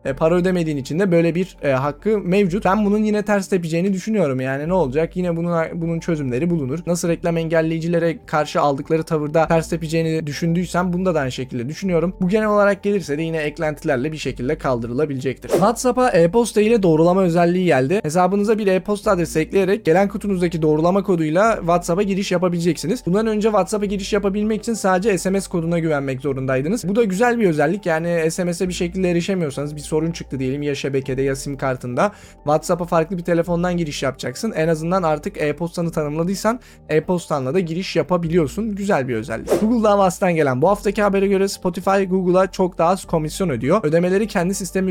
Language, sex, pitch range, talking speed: Turkish, male, 155-195 Hz, 175 wpm